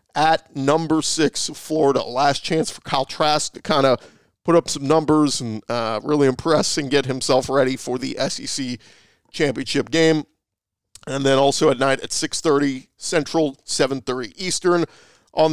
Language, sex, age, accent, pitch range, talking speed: English, male, 40-59, American, 135-160 Hz, 160 wpm